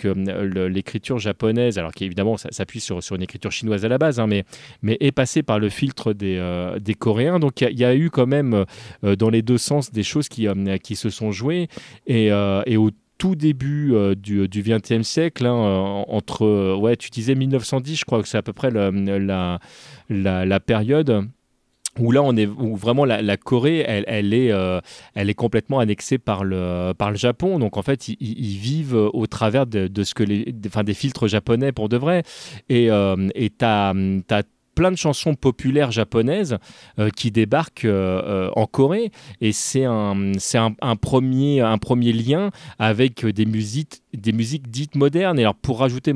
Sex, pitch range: male, 105-135 Hz